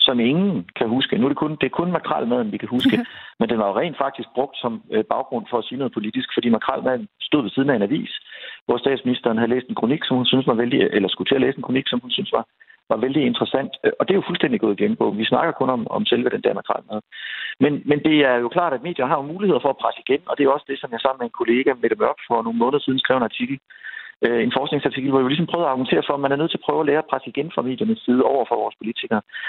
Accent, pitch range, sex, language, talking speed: native, 125-190 Hz, male, Danish, 285 wpm